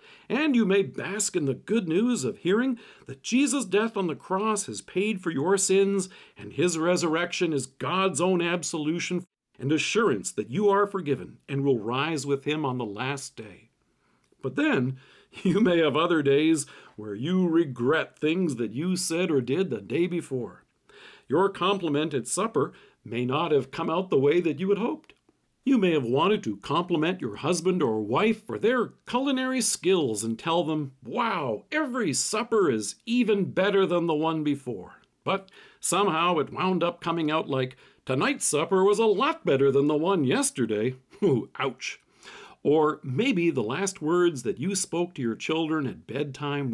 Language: English